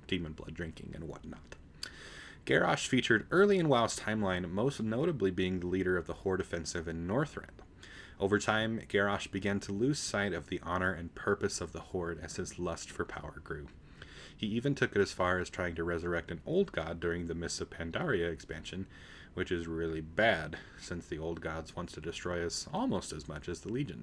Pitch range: 85-100 Hz